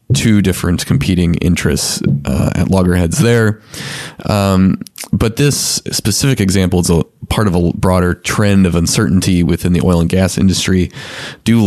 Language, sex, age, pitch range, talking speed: English, male, 20-39, 90-105 Hz, 150 wpm